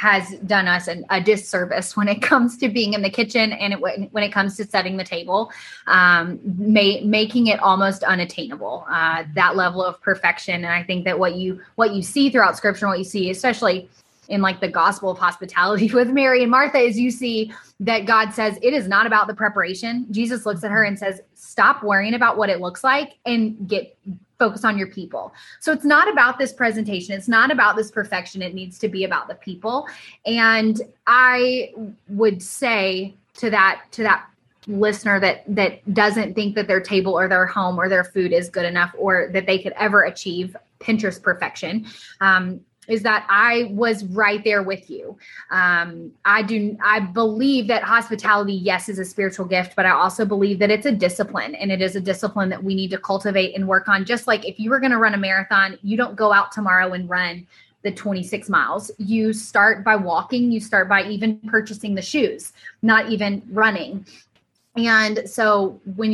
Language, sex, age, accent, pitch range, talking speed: English, female, 10-29, American, 190-220 Hz, 200 wpm